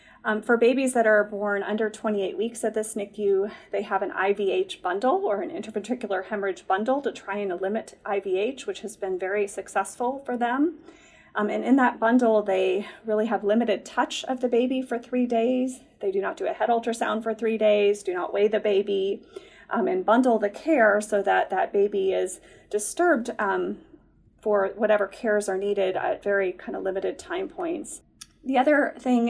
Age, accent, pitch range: 30-49, American, 195-255 Hz